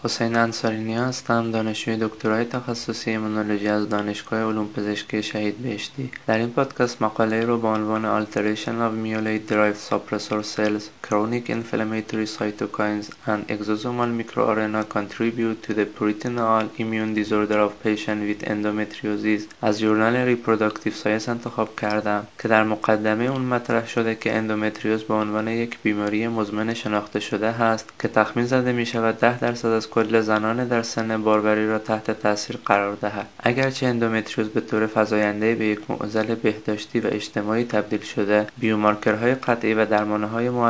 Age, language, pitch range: 20-39, Persian, 105-115 Hz